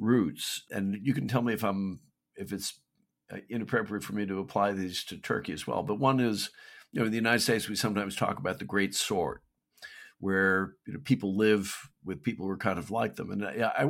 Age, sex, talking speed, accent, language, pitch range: 50-69, male, 225 wpm, American, English, 100-120 Hz